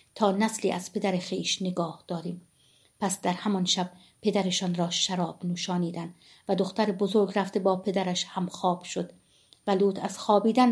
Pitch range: 185-205 Hz